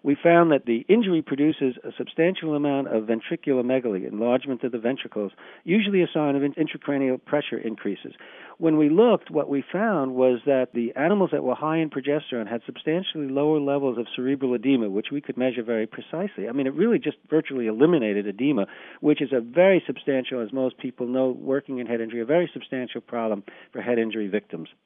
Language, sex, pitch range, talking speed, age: English, male, 120-150 Hz, 195 wpm, 50-69